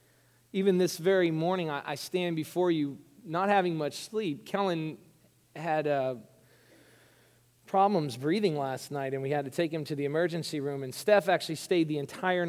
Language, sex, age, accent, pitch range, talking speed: English, male, 40-59, American, 125-175 Hz, 170 wpm